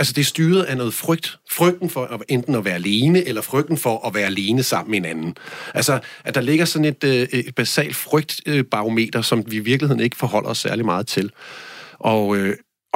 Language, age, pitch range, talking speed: Danish, 40-59, 110-145 Hz, 205 wpm